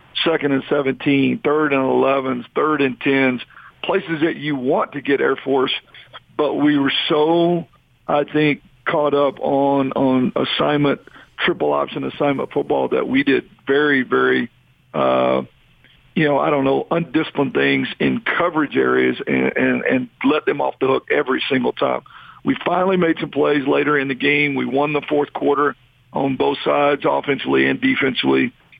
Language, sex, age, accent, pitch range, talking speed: English, male, 50-69, American, 125-145 Hz, 165 wpm